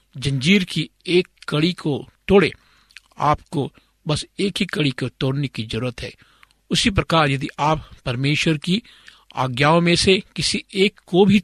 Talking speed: 150 wpm